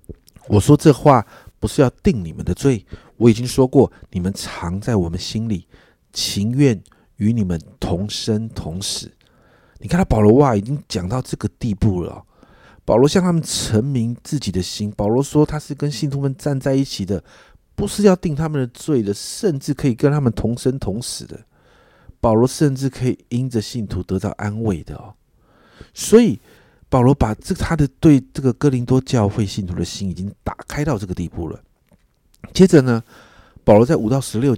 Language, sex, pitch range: Chinese, male, 105-145 Hz